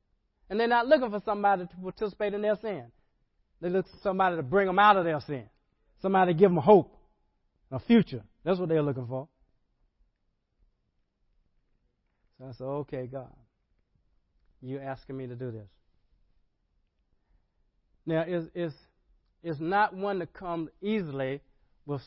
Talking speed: 150 wpm